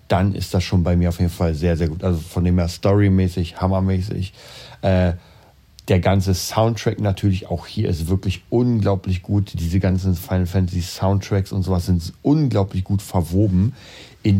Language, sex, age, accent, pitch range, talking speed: German, male, 40-59, German, 90-100 Hz, 170 wpm